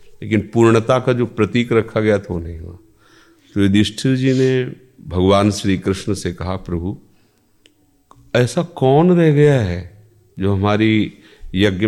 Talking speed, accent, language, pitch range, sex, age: 140 wpm, native, Hindi, 90-110 Hz, male, 40-59